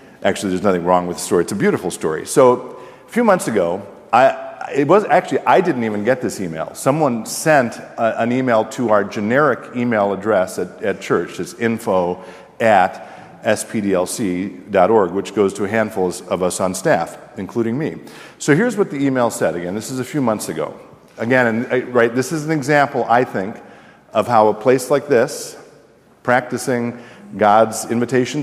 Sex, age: male, 50-69